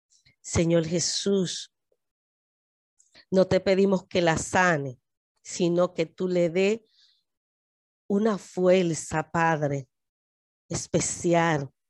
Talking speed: 85 wpm